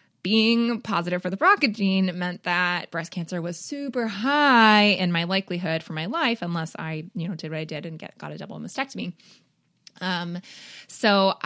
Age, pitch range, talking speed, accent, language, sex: 20-39, 170-200 Hz, 185 wpm, American, English, female